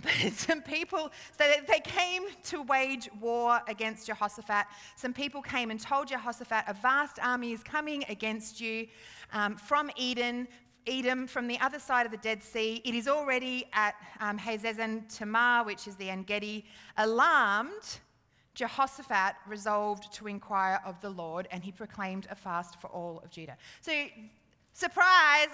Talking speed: 155 wpm